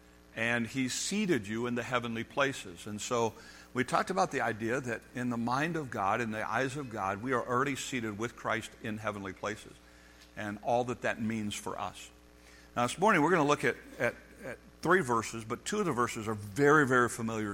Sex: male